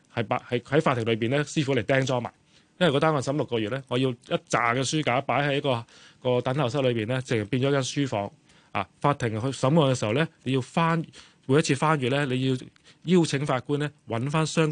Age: 20-39